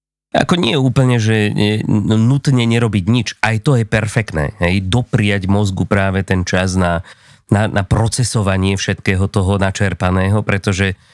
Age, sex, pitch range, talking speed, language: 30-49, male, 100-130 Hz, 145 wpm, Slovak